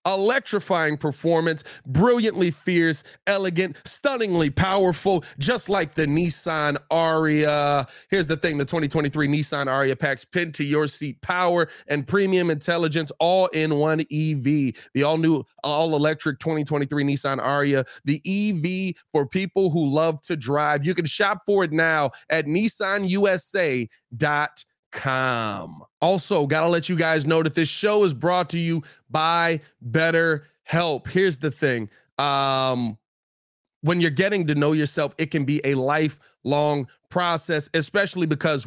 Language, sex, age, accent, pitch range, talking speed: English, male, 20-39, American, 145-170 Hz, 135 wpm